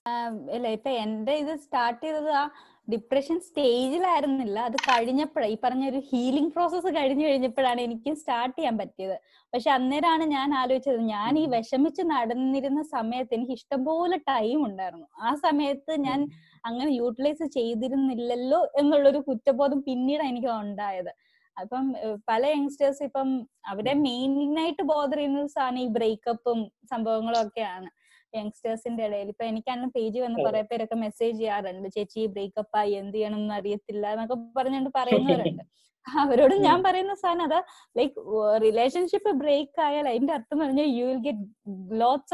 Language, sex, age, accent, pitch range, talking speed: Malayalam, female, 20-39, native, 225-290 Hz, 130 wpm